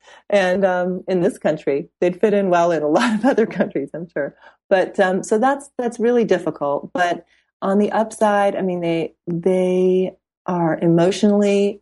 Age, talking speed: 30-49, 175 wpm